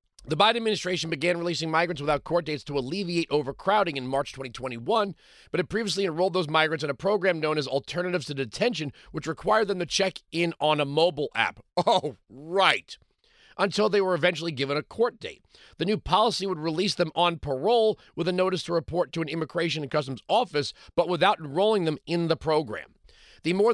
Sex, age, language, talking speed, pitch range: male, 40-59, English, 195 wpm, 135-185 Hz